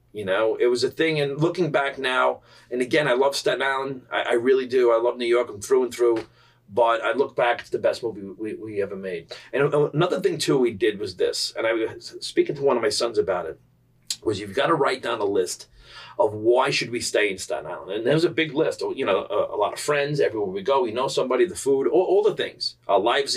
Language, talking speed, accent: English, 260 wpm, American